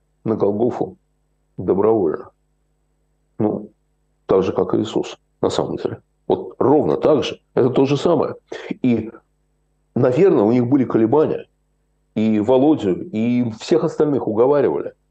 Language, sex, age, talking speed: Russian, male, 60-79, 125 wpm